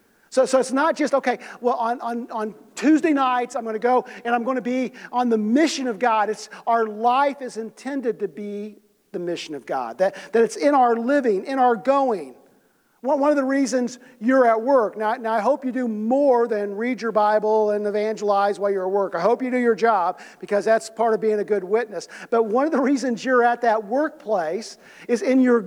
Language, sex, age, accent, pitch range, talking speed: English, male, 50-69, American, 210-255 Hz, 225 wpm